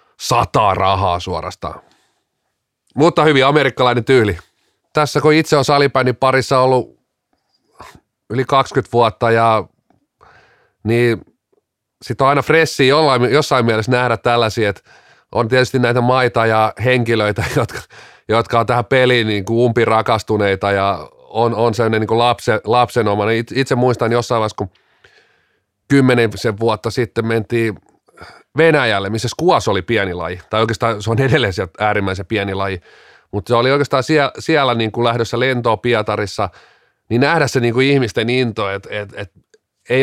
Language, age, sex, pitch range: Finnish, 30-49, male, 105-130 Hz